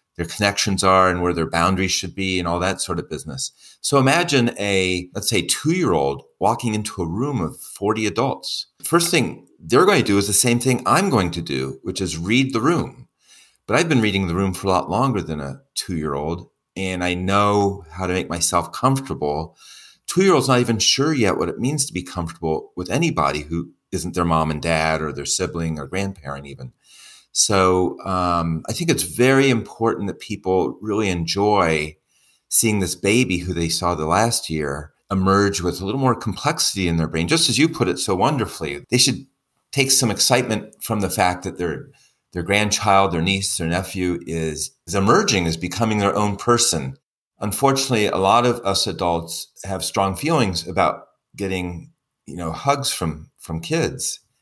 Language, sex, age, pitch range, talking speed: English, male, 30-49, 85-110 Hz, 185 wpm